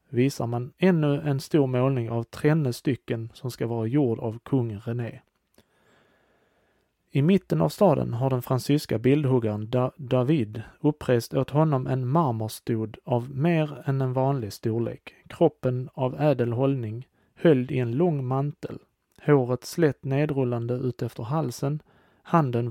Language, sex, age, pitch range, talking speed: Swedish, male, 30-49, 120-145 Hz, 135 wpm